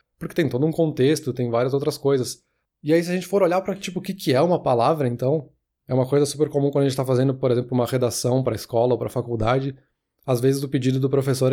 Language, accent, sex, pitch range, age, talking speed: Portuguese, Brazilian, male, 130-150 Hz, 20-39, 260 wpm